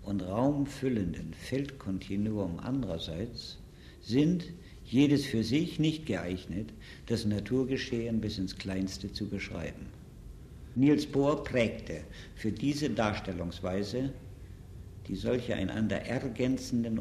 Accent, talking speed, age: German, 95 wpm, 60-79